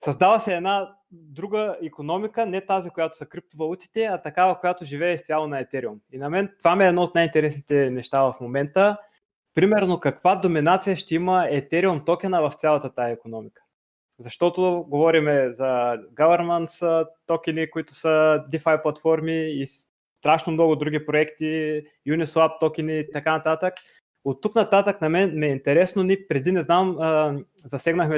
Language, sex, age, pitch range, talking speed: Bulgarian, male, 20-39, 145-180 Hz, 155 wpm